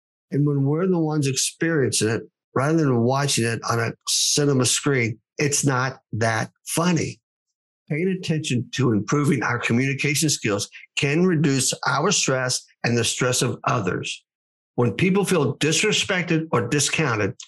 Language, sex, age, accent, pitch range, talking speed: English, male, 50-69, American, 120-155 Hz, 140 wpm